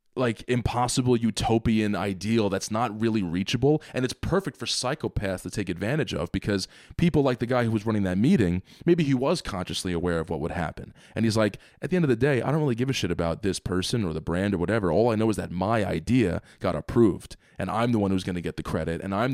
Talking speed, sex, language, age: 250 wpm, male, English, 20-39